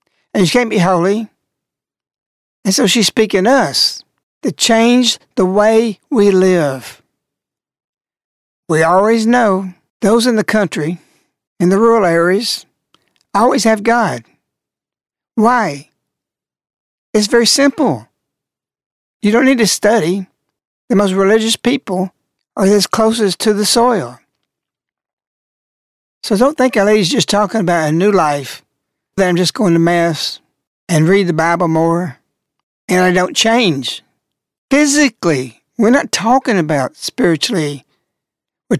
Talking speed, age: 125 wpm, 60-79